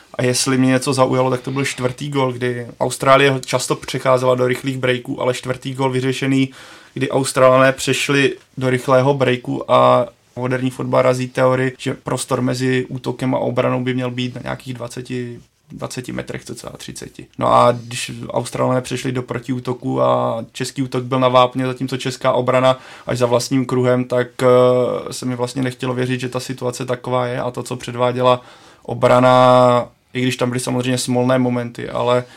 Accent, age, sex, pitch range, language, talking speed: native, 20-39, male, 120-130 Hz, Czech, 170 wpm